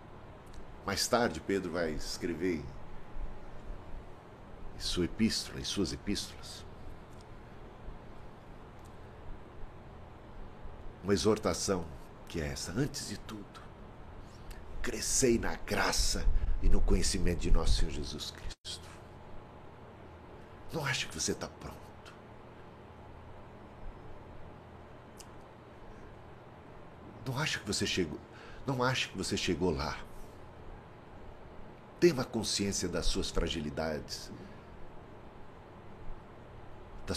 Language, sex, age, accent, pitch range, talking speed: Portuguese, male, 60-79, Brazilian, 90-110 Hz, 85 wpm